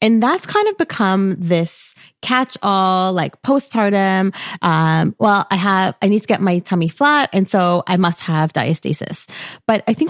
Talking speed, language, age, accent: 180 wpm, English, 30-49, American